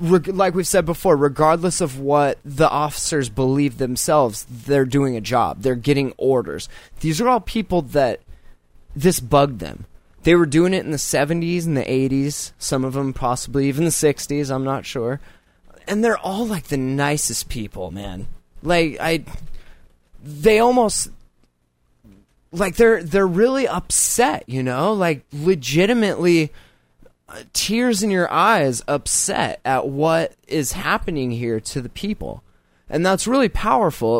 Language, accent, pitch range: English, American, 120-175 Hz